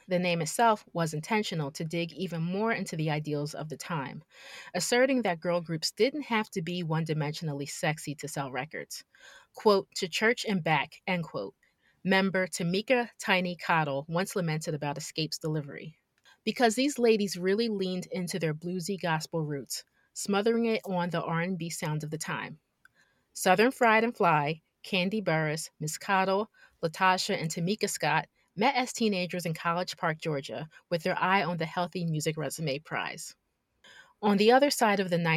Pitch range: 160-200 Hz